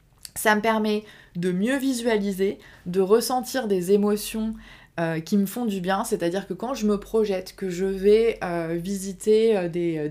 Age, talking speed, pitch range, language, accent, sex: 20-39, 180 wpm, 175-205 Hz, French, French, female